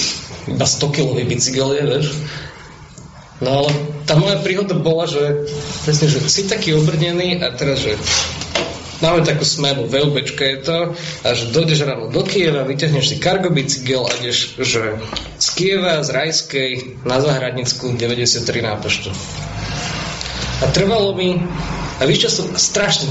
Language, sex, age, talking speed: Slovak, male, 20-39, 145 wpm